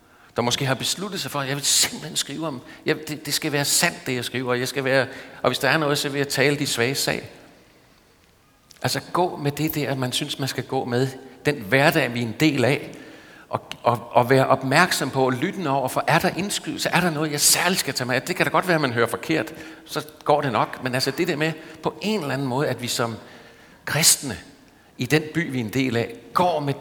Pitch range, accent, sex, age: 120-150 Hz, native, male, 60-79